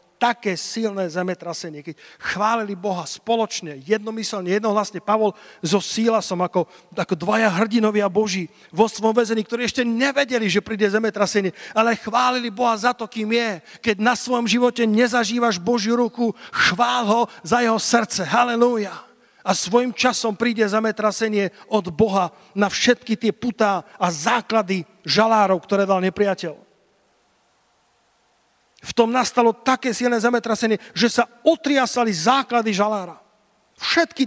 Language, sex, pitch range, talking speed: Slovak, male, 205-240 Hz, 135 wpm